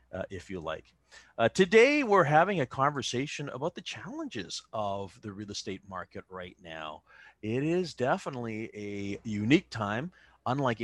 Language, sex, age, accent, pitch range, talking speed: English, male, 40-59, American, 105-160 Hz, 150 wpm